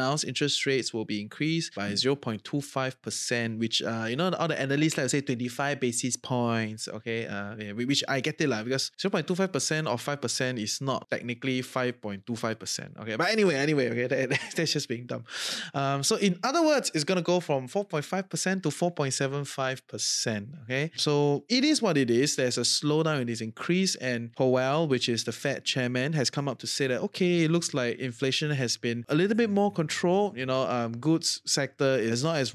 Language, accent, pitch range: English, Malaysian, 125-160 Hz